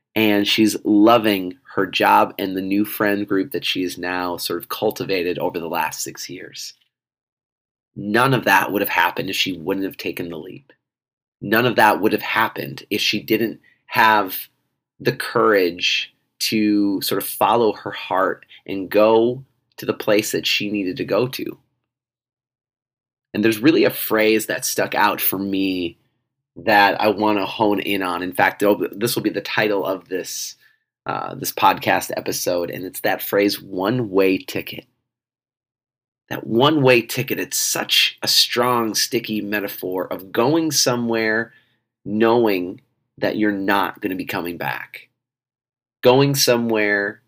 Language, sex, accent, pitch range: English, male, American, 100-125 Hz